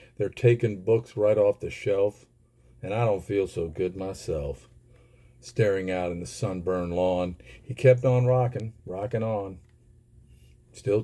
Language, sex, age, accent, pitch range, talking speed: English, male, 50-69, American, 90-120 Hz, 145 wpm